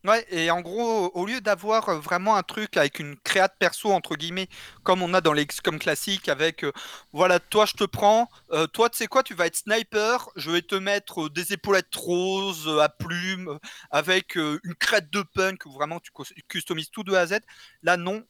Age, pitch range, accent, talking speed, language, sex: 30-49, 160-205 Hz, French, 215 wpm, French, male